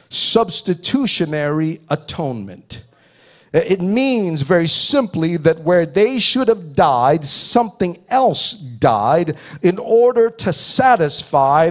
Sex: male